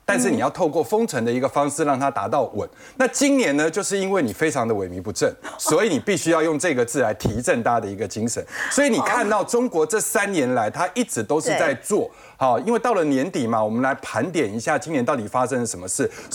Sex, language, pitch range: male, Chinese, 140-220 Hz